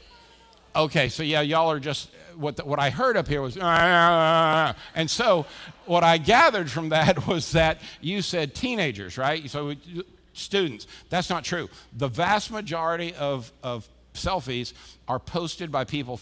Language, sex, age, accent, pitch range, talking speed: English, male, 50-69, American, 140-185 Hz, 155 wpm